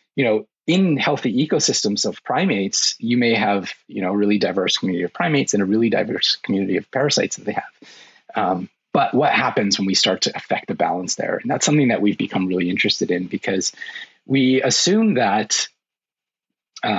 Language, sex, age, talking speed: English, male, 30-49, 185 wpm